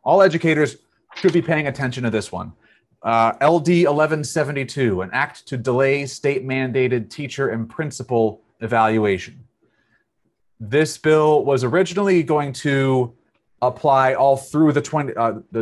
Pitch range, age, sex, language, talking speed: 115-150 Hz, 30-49, male, English, 125 wpm